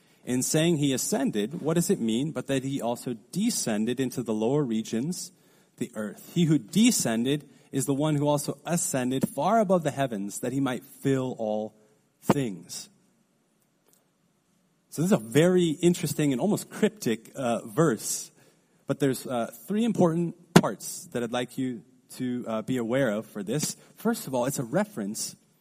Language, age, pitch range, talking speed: English, 30-49, 125-180 Hz, 170 wpm